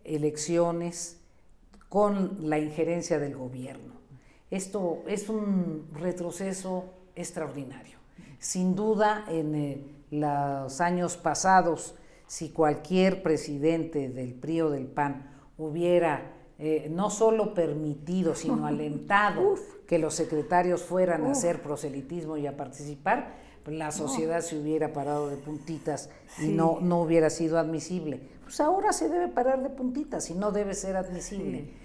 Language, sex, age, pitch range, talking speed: Spanish, female, 50-69, 145-185 Hz, 130 wpm